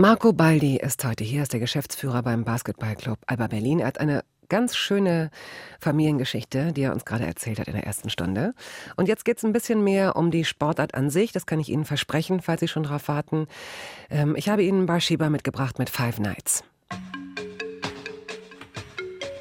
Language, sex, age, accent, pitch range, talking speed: German, female, 40-59, German, 130-185 Hz, 180 wpm